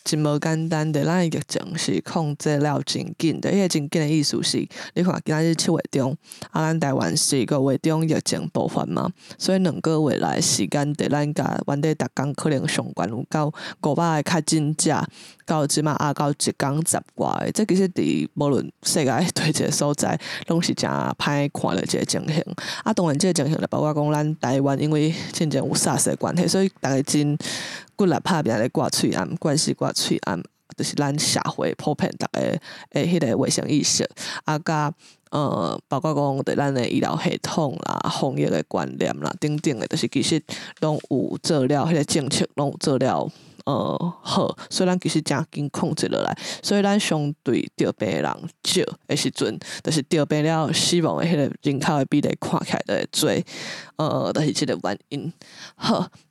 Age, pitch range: 20-39, 145-170 Hz